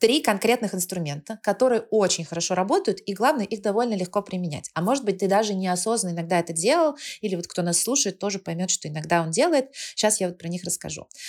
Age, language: 30-49, Russian